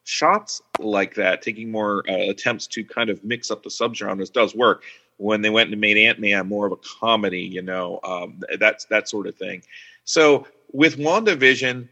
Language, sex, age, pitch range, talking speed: English, male, 30-49, 105-120 Hz, 185 wpm